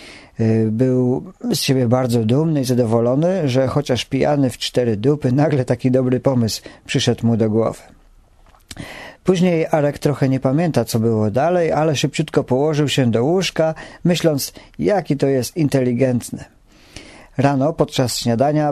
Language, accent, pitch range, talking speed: English, Polish, 125-175 Hz, 140 wpm